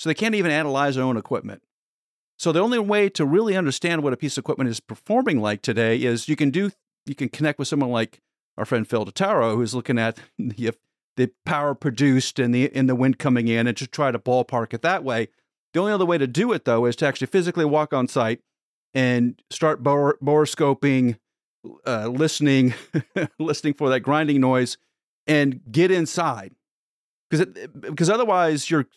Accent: American